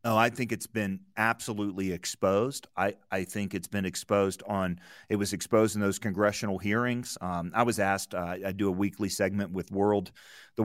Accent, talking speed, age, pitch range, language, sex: American, 190 wpm, 30-49, 95-110 Hz, English, male